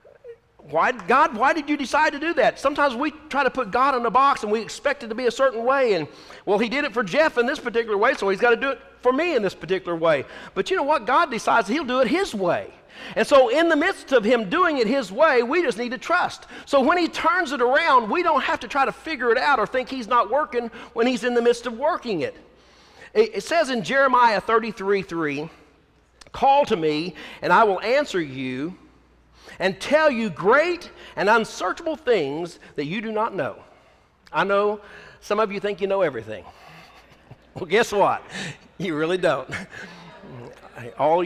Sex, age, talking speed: male, 50-69, 215 wpm